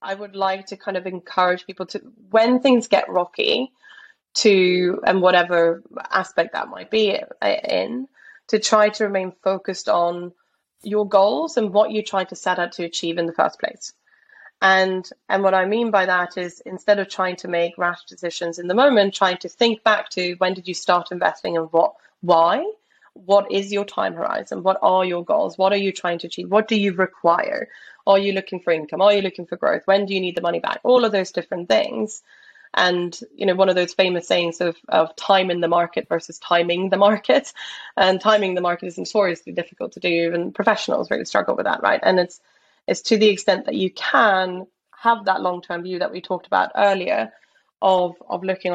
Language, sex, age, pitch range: English, female, 20-39, 175-205 Hz